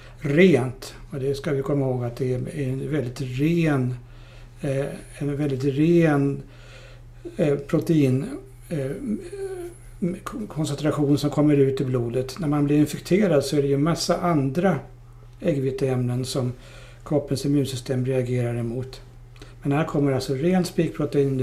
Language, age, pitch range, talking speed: Swedish, 60-79, 130-150 Hz, 130 wpm